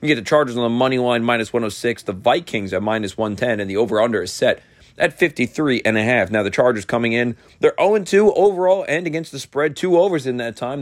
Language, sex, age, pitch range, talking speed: English, male, 30-49, 110-145 Hz, 235 wpm